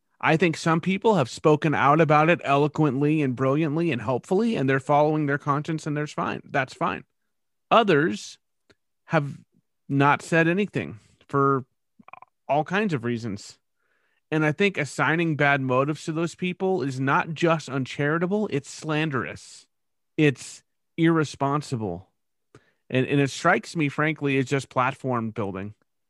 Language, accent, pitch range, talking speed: English, American, 120-150 Hz, 140 wpm